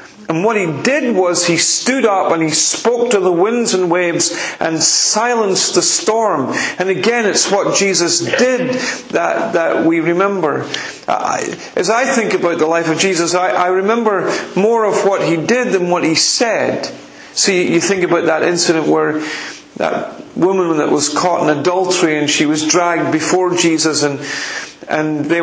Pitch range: 160-200 Hz